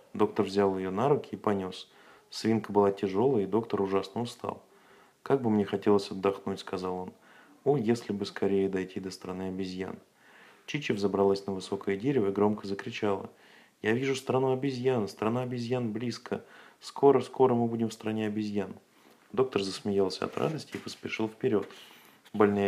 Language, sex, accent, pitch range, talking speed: Russian, male, native, 100-125 Hz, 155 wpm